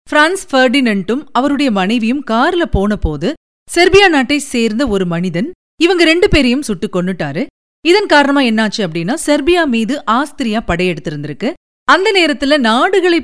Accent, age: native, 40-59